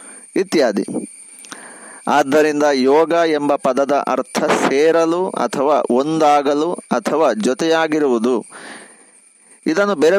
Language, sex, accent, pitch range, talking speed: Kannada, male, native, 140-190 Hz, 75 wpm